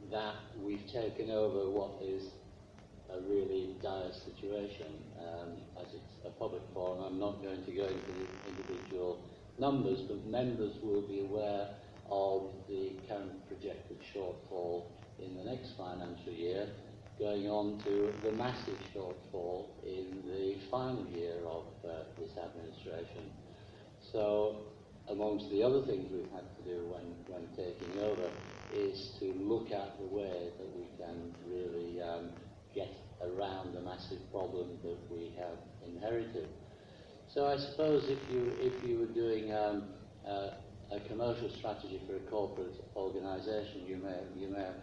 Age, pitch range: 60-79, 95-105 Hz